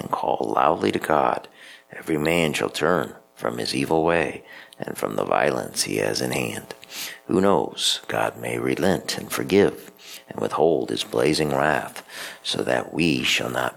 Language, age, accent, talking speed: English, 50-69, American, 160 wpm